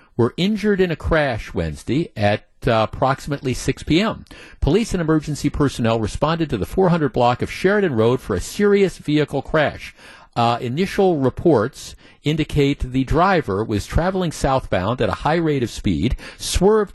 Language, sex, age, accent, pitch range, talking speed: English, male, 50-69, American, 115-155 Hz, 155 wpm